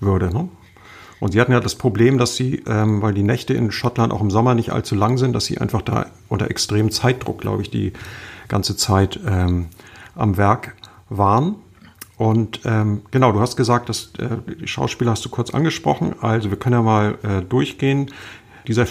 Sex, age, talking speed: male, 50-69, 190 wpm